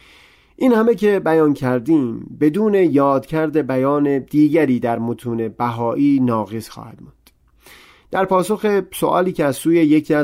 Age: 30-49